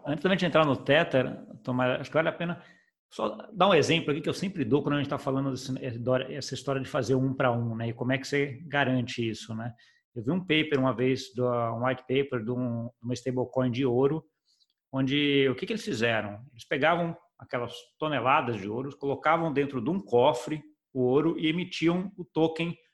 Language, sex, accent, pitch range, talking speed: Portuguese, male, Brazilian, 125-170 Hz, 210 wpm